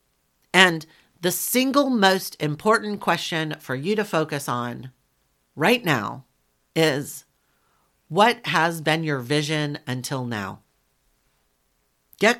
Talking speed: 105 wpm